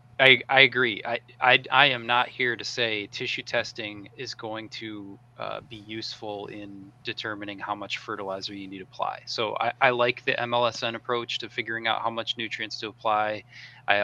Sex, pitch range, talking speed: male, 105-125 Hz, 190 wpm